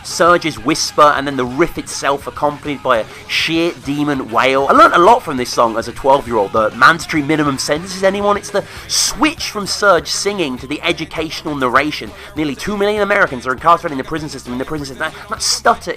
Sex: male